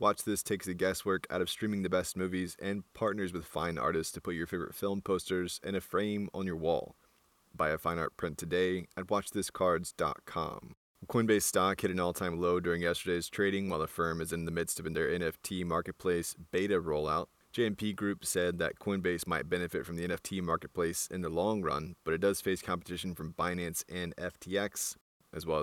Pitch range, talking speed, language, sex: 85-95 Hz, 200 wpm, English, male